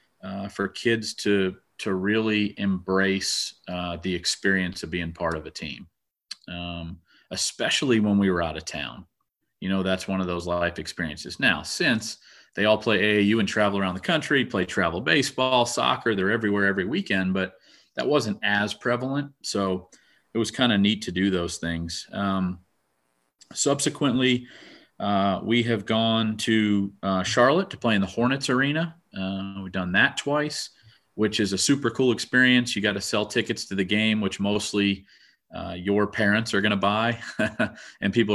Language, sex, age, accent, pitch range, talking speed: English, male, 40-59, American, 95-115 Hz, 175 wpm